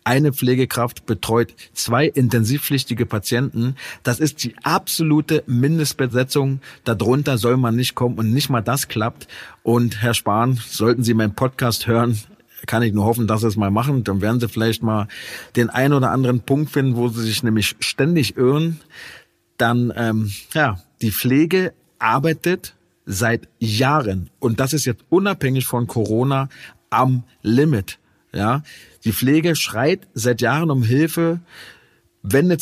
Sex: male